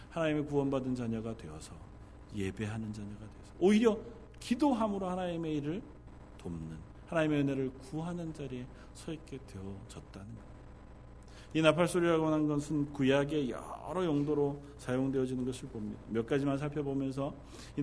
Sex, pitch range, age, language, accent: male, 115-150 Hz, 40-59, Korean, native